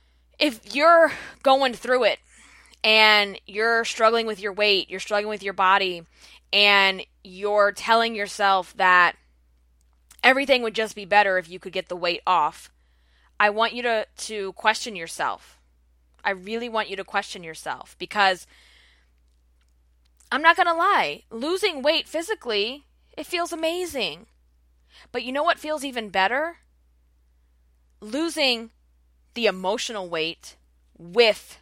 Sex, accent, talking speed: female, American, 135 wpm